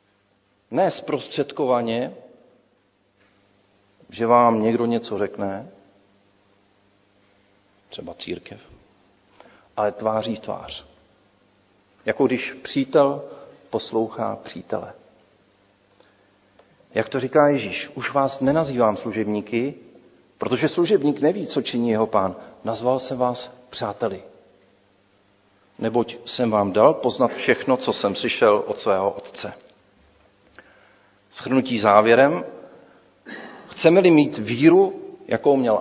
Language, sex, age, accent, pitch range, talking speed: Czech, male, 40-59, native, 100-130 Hz, 90 wpm